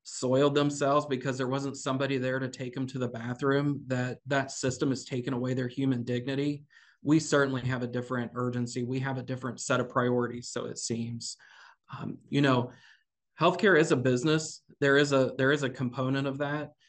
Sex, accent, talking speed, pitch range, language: male, American, 190 wpm, 125-140 Hz, English